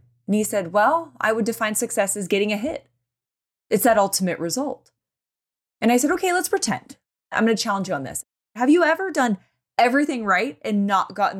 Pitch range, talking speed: 170-255 Hz, 200 wpm